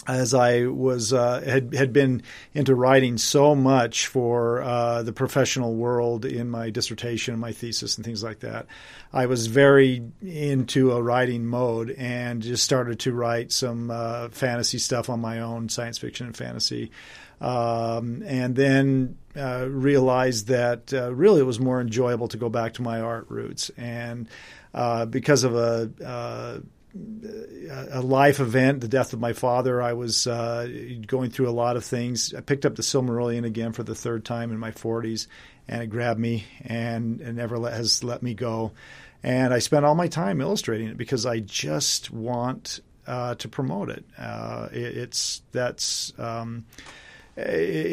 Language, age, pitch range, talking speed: English, 40-59, 115-130 Hz, 170 wpm